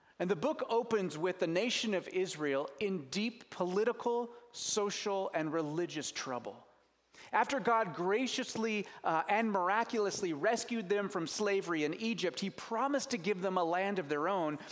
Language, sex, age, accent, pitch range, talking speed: English, male, 30-49, American, 170-225 Hz, 155 wpm